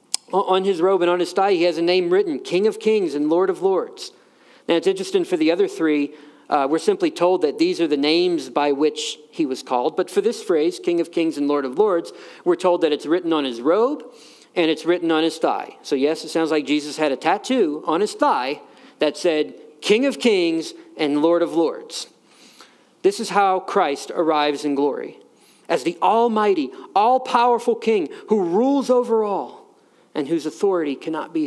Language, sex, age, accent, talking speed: English, male, 40-59, American, 205 wpm